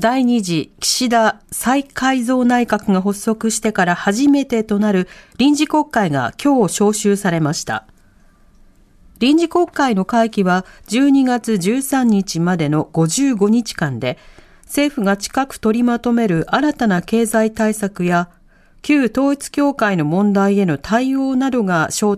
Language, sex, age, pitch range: Japanese, female, 40-59, 170-265 Hz